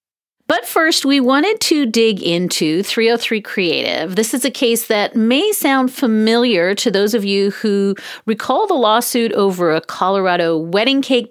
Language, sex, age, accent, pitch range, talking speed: English, female, 40-59, American, 195-260 Hz, 160 wpm